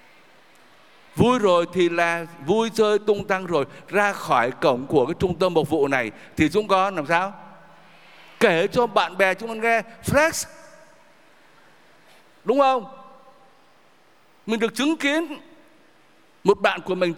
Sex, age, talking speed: male, 60-79, 145 wpm